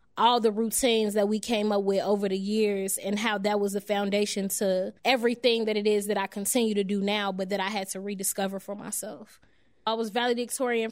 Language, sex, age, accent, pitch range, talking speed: English, female, 20-39, American, 200-225 Hz, 215 wpm